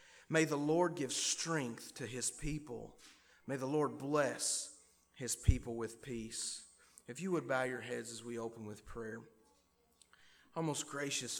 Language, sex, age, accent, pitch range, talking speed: English, male, 30-49, American, 115-140 Hz, 160 wpm